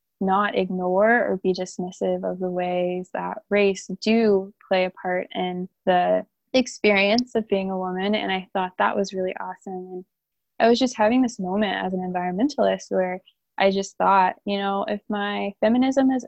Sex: female